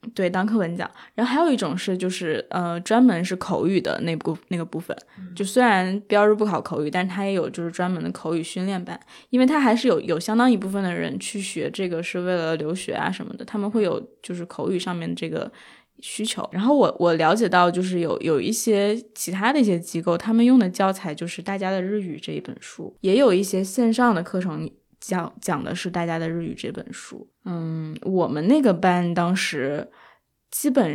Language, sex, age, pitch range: Chinese, female, 10-29, 170-220 Hz